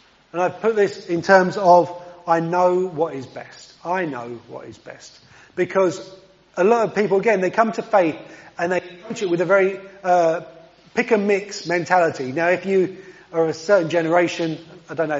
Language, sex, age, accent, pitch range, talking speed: English, male, 30-49, British, 165-200 Hz, 185 wpm